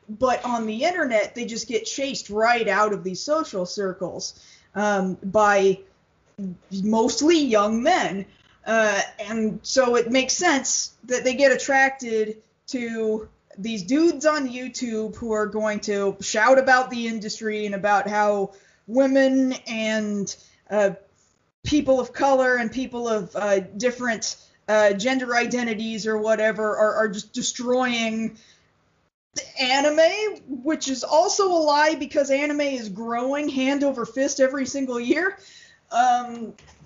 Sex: female